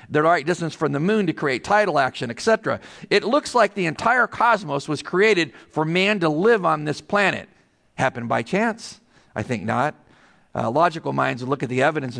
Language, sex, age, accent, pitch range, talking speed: English, male, 50-69, American, 135-190 Hz, 195 wpm